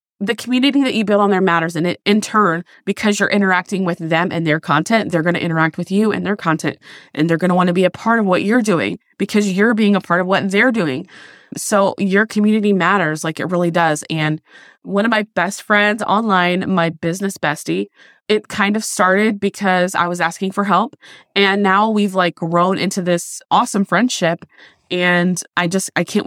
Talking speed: 210 wpm